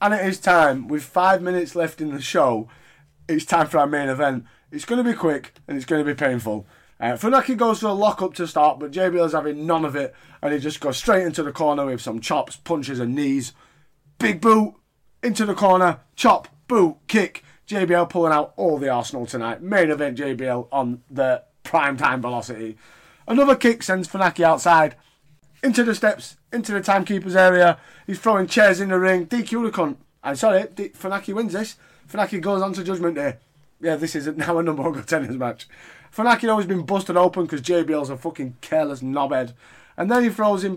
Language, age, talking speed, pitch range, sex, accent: English, 30-49, 205 wpm, 145-200 Hz, male, British